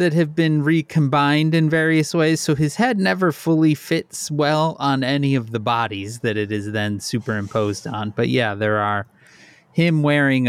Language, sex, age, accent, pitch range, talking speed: English, male, 30-49, American, 125-160 Hz, 175 wpm